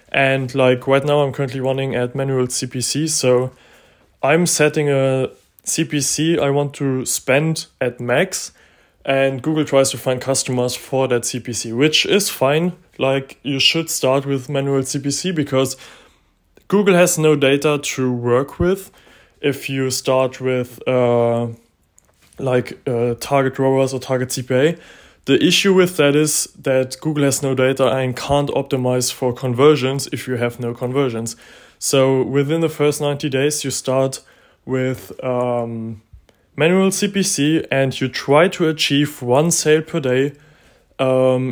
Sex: male